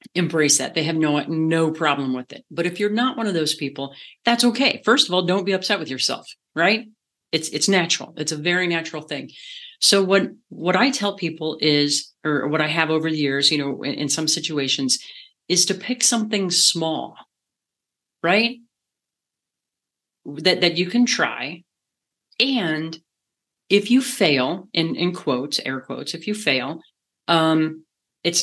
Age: 40-59